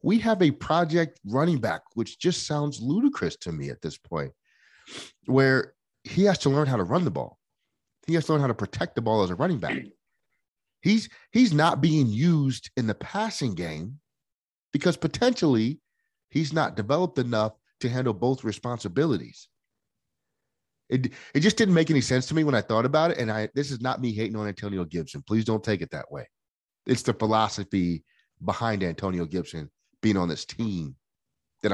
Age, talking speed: 30-49, 185 wpm